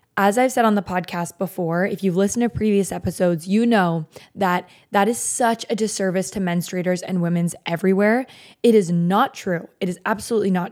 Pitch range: 180-215 Hz